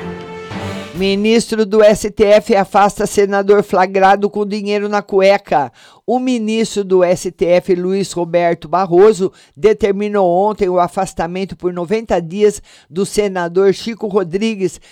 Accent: Brazilian